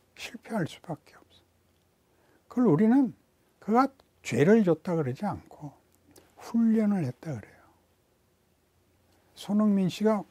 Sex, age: male, 60-79